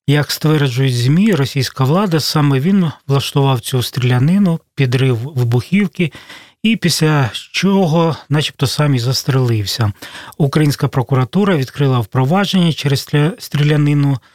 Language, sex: Russian, male